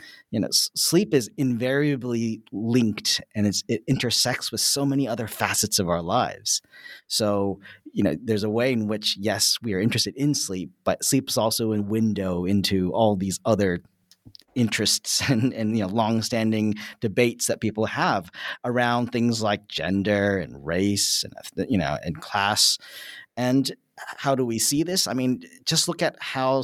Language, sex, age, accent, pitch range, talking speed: English, male, 30-49, American, 105-135 Hz, 165 wpm